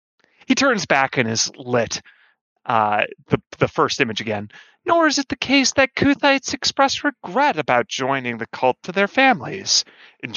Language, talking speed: English, 170 wpm